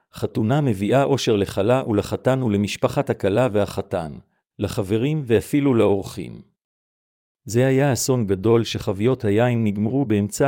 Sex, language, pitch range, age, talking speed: male, Hebrew, 100-125 Hz, 50-69, 110 wpm